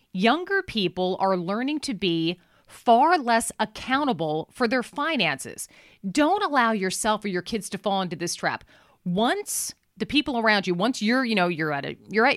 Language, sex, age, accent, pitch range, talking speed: English, female, 40-59, American, 195-280 Hz, 180 wpm